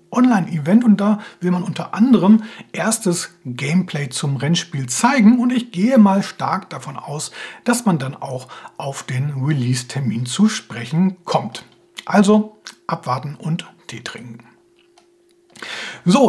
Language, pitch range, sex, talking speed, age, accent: German, 160-220 Hz, male, 130 wpm, 40-59, German